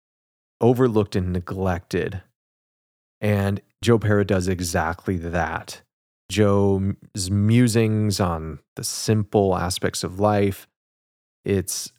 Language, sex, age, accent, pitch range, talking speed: English, male, 30-49, American, 90-110 Hz, 90 wpm